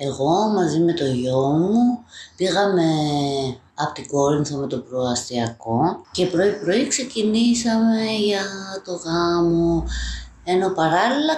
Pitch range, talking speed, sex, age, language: 145-230 Hz, 110 wpm, female, 20-39, Greek